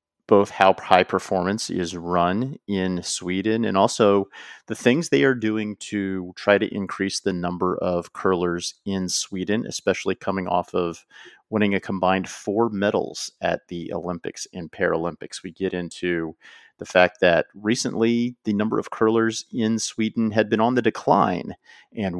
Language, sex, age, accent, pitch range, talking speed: English, male, 40-59, American, 90-110 Hz, 155 wpm